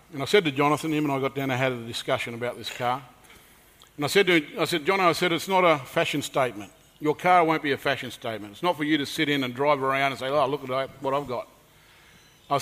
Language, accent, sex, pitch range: English, Australian, male, 135-165 Hz